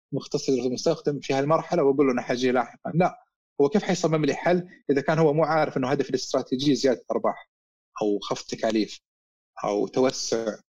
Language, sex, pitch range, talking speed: Arabic, male, 130-180 Hz, 170 wpm